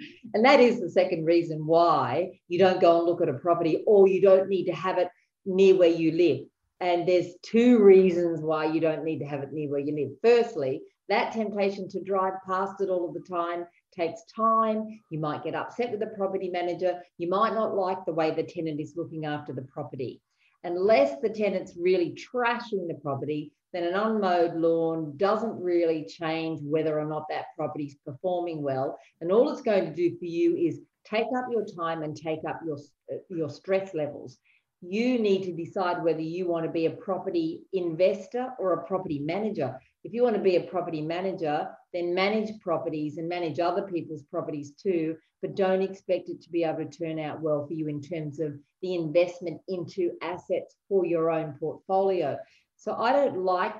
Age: 40-59